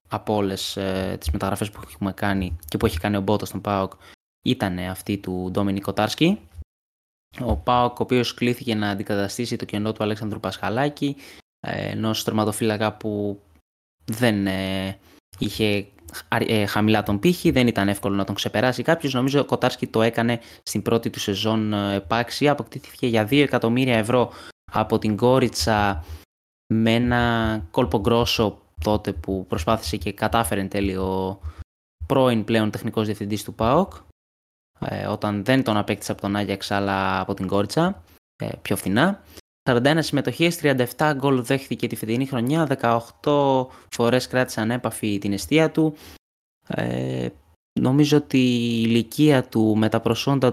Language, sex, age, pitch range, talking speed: Greek, male, 20-39, 100-125 Hz, 145 wpm